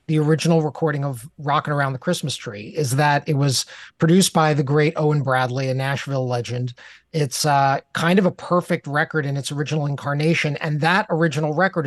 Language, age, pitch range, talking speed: English, 30-49, 145-170 Hz, 185 wpm